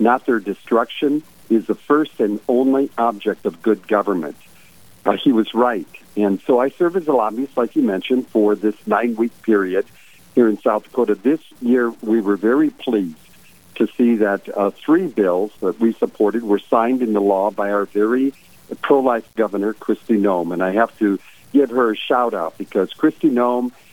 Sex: male